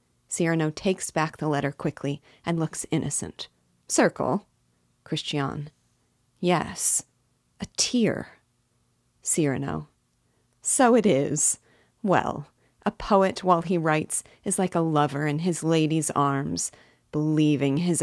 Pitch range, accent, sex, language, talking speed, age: 140-175 Hz, American, female, English, 115 wpm, 30-49